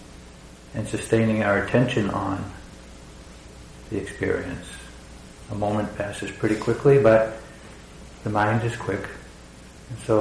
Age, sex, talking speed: 60-79, male, 110 wpm